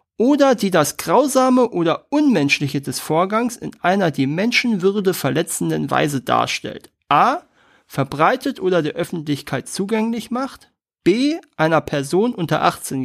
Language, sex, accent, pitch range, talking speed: German, male, German, 155-230 Hz, 125 wpm